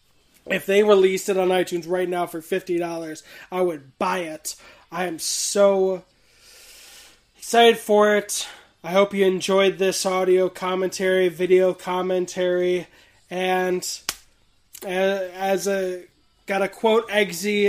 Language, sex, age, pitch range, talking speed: English, male, 20-39, 180-195 Hz, 125 wpm